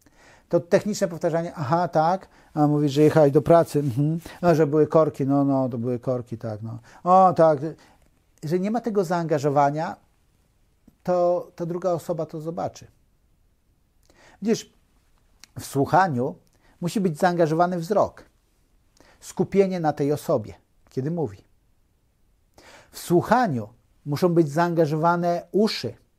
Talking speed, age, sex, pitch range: 125 wpm, 50-69, male, 130-175 Hz